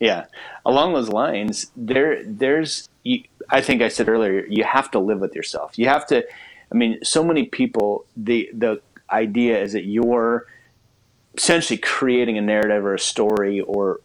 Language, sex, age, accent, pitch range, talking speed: English, male, 30-49, American, 105-130 Hz, 170 wpm